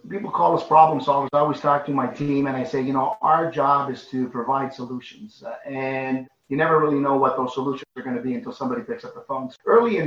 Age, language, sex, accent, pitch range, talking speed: 30-49, English, male, American, 135-165 Hz, 255 wpm